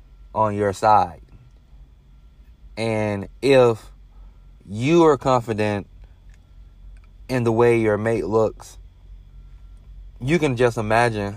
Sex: male